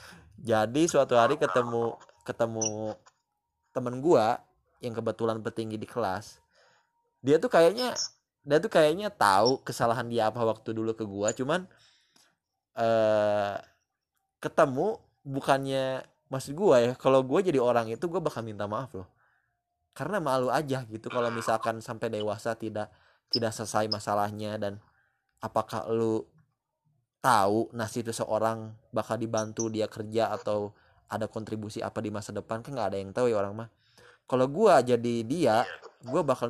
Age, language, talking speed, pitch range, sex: 20-39, English, 140 wpm, 110-135 Hz, male